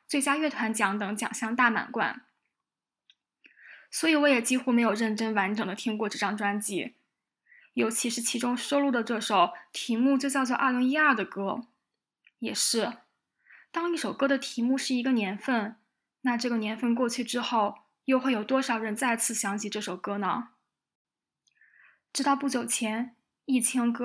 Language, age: Chinese, 10-29